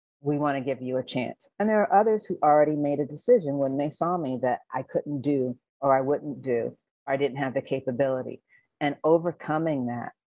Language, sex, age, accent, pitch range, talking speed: English, female, 40-59, American, 135-160 Hz, 215 wpm